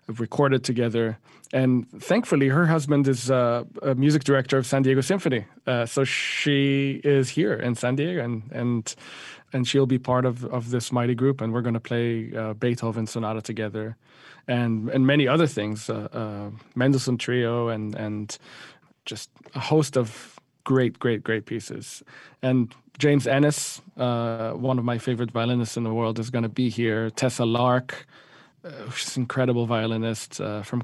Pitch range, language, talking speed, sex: 115-135 Hz, English, 170 wpm, male